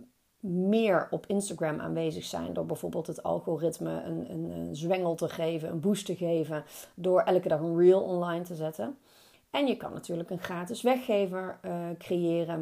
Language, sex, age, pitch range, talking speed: Dutch, female, 30-49, 170-210 Hz, 170 wpm